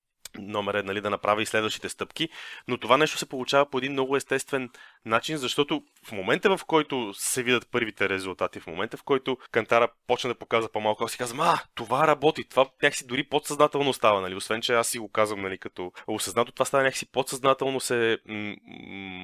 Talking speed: 195 wpm